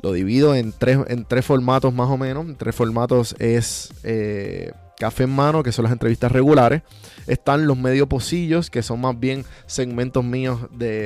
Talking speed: 185 wpm